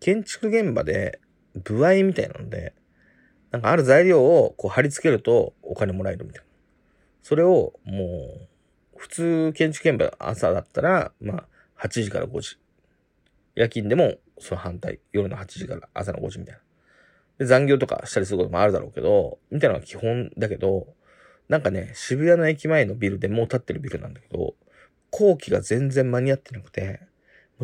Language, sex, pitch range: Japanese, male, 115-170 Hz